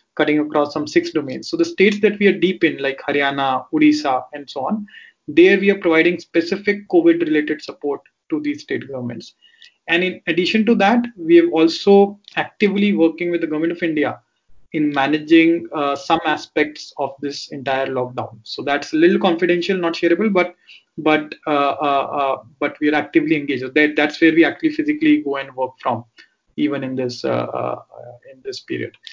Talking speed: 185 wpm